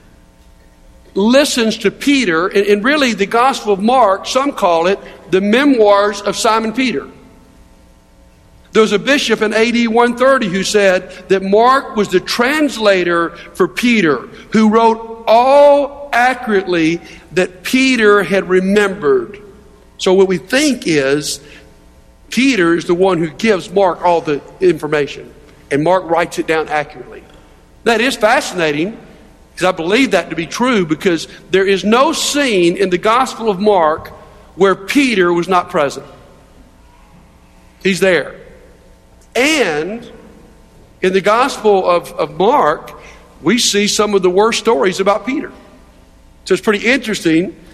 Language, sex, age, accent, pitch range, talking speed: English, male, 60-79, American, 175-225 Hz, 135 wpm